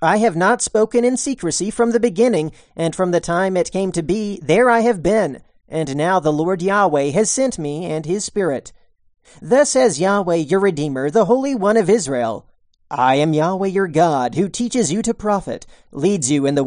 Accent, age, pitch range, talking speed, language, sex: American, 40-59, 160-225 Hz, 200 wpm, English, male